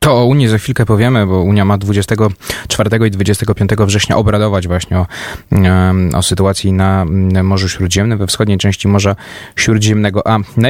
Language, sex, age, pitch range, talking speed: Polish, male, 20-39, 100-115 Hz, 155 wpm